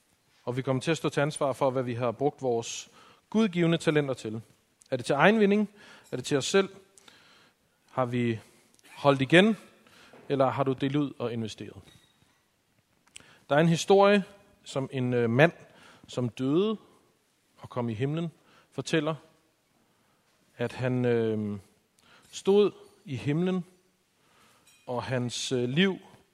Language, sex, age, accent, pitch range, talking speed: Danish, male, 40-59, native, 120-155 Hz, 135 wpm